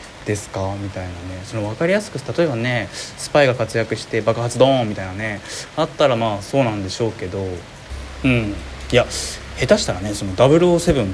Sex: male